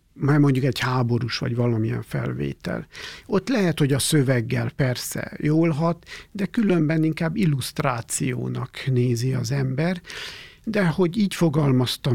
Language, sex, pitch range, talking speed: Hungarian, male, 130-165 Hz, 130 wpm